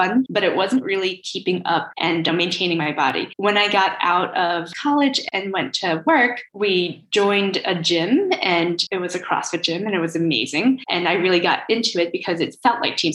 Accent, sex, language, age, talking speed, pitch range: American, female, English, 10-29, 205 wpm, 175-215 Hz